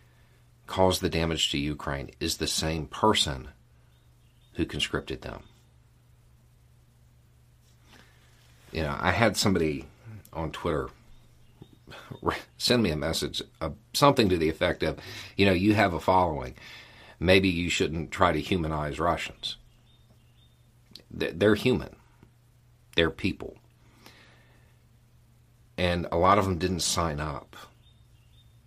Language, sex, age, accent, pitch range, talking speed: English, male, 50-69, American, 70-110 Hz, 115 wpm